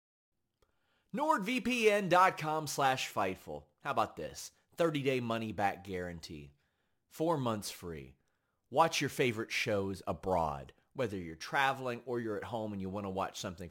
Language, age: English, 30-49